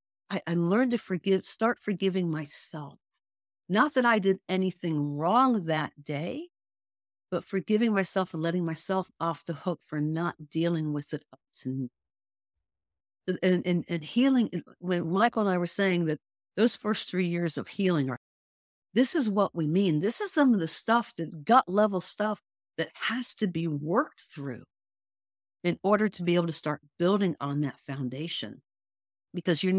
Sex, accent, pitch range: female, American, 155-210 Hz